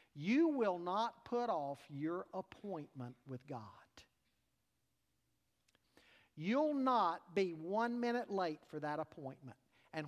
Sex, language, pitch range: male, English, 140-230 Hz